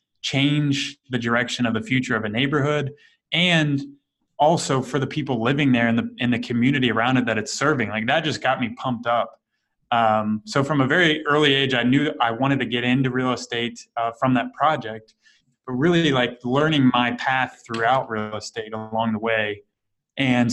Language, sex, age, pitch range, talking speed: English, male, 20-39, 115-140 Hz, 190 wpm